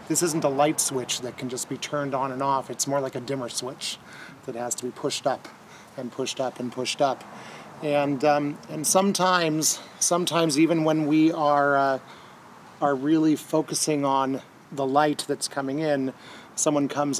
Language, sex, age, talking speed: English, male, 30-49, 180 wpm